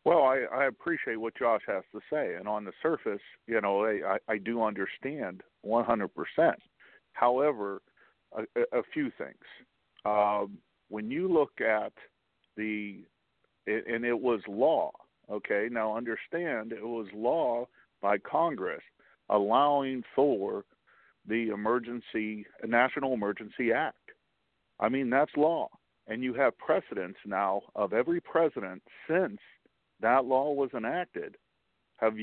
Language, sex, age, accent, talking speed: English, male, 50-69, American, 130 wpm